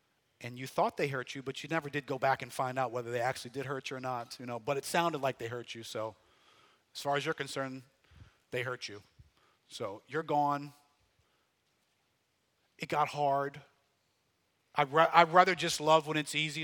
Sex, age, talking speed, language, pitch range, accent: male, 40-59, 195 wpm, English, 125-155 Hz, American